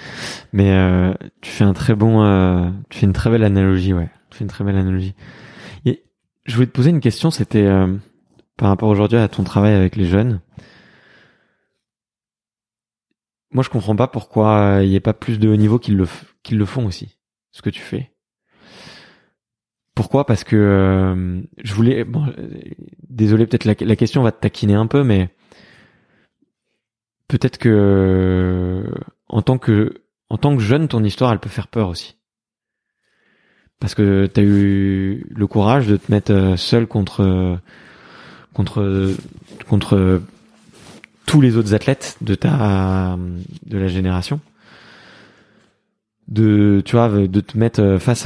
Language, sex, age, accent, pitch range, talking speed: French, male, 20-39, French, 95-115 Hz, 160 wpm